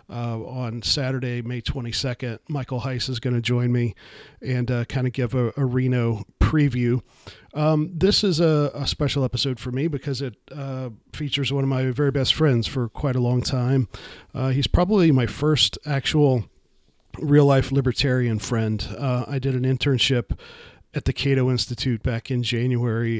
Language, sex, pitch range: English, male, 120-135 Hz